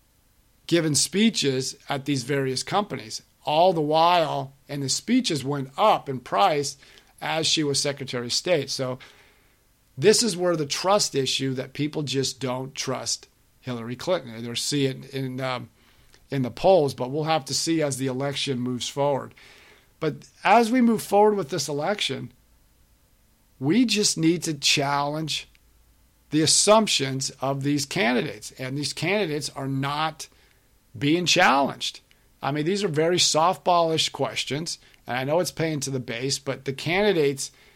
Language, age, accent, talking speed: English, 50-69, American, 150 wpm